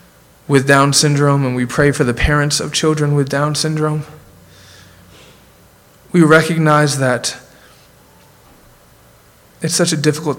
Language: English